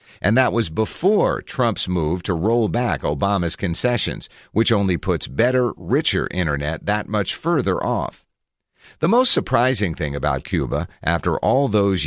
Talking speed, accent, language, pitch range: 150 wpm, American, English, 85-125 Hz